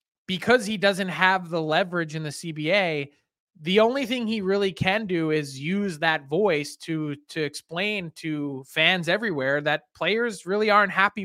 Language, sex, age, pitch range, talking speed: English, male, 20-39, 165-200 Hz, 165 wpm